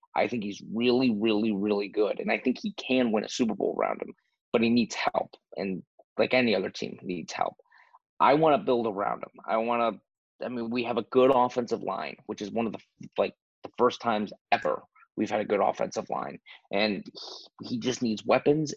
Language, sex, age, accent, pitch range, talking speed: English, male, 30-49, American, 110-125 Hz, 220 wpm